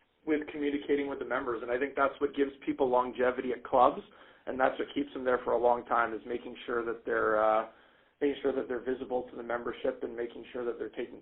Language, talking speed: English, 240 wpm